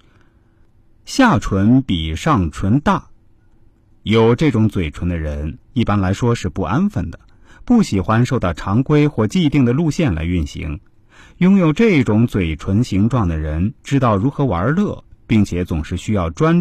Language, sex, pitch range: Chinese, male, 95-135 Hz